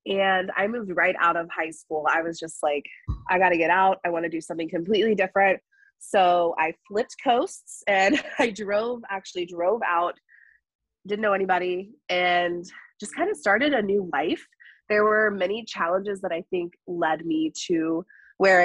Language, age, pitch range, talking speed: English, 20-39, 175-220 Hz, 180 wpm